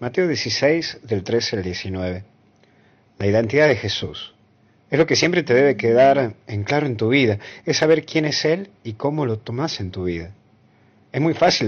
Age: 40-59